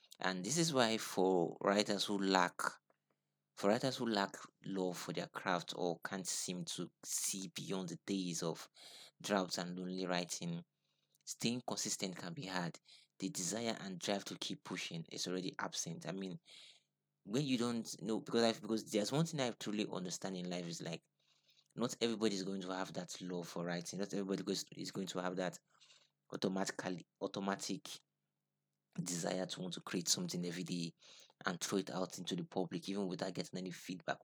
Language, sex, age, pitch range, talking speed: English, male, 30-49, 90-105 Hz, 180 wpm